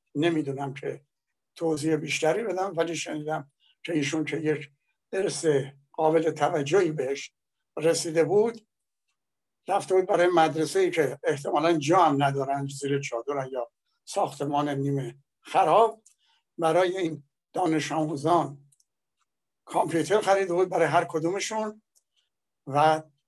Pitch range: 150-185 Hz